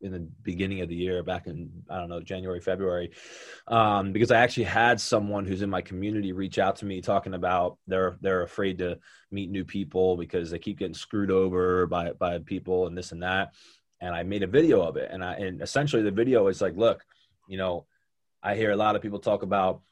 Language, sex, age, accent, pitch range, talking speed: English, male, 20-39, American, 100-120 Hz, 225 wpm